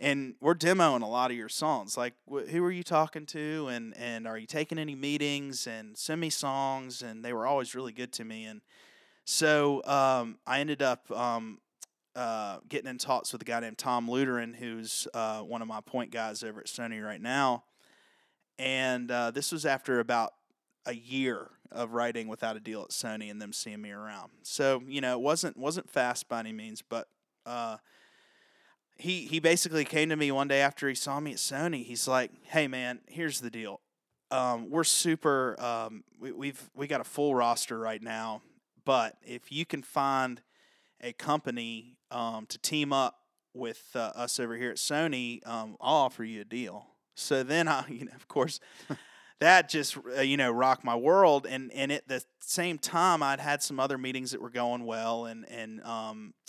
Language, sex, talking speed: English, male, 195 wpm